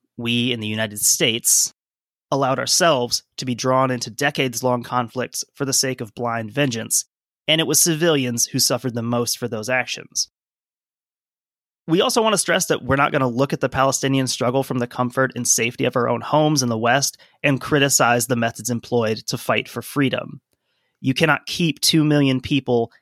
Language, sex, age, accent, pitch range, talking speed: English, male, 30-49, American, 120-140 Hz, 190 wpm